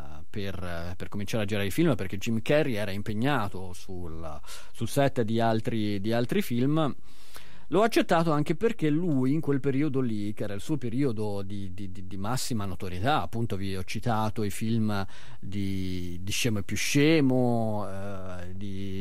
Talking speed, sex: 165 wpm, male